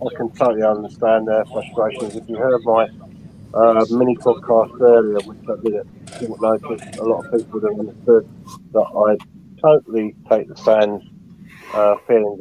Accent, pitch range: British, 100-115 Hz